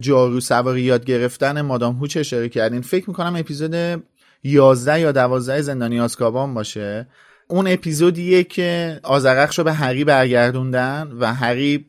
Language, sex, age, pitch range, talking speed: Persian, male, 30-49, 120-150 Hz, 130 wpm